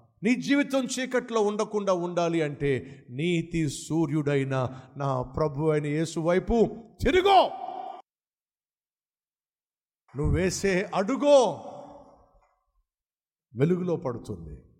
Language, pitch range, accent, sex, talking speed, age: Telugu, 130-190 Hz, native, male, 75 wpm, 50-69